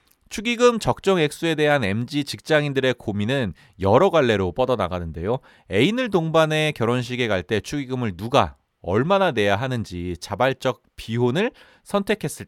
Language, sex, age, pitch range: Korean, male, 30-49, 100-165 Hz